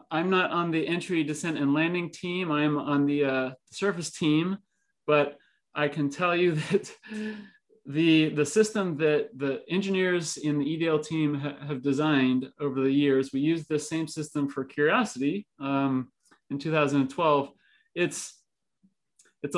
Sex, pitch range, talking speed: male, 145-180 Hz, 150 wpm